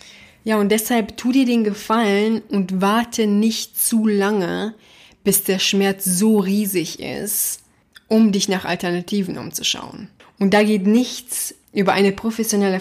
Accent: German